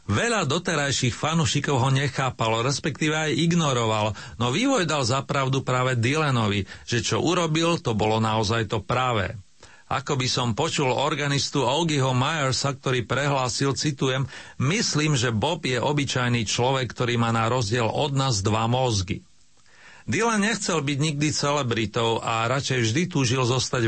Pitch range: 110-145 Hz